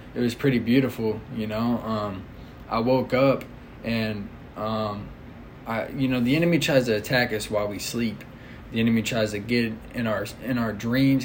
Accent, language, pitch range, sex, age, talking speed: American, English, 110-125 Hz, male, 20-39, 180 wpm